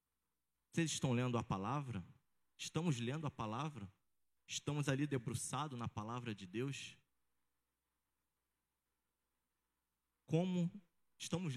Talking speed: 95 wpm